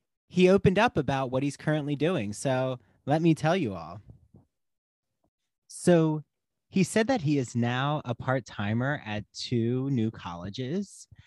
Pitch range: 110-145 Hz